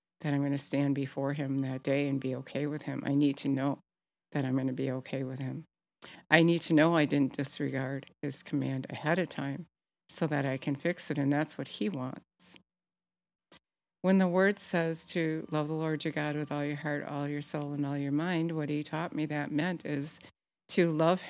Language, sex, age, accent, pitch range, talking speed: English, female, 50-69, American, 145-170 Hz, 225 wpm